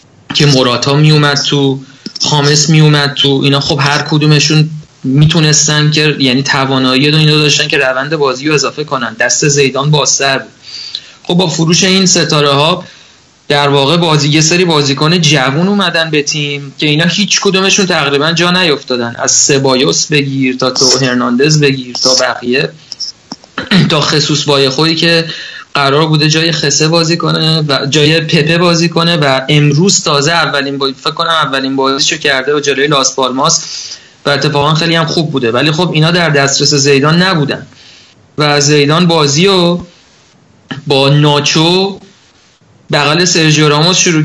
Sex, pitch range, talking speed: male, 140-165 Hz, 150 wpm